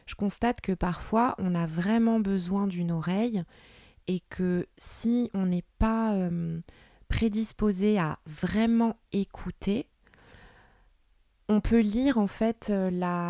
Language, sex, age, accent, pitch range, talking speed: French, female, 20-39, French, 180-215 Hz, 120 wpm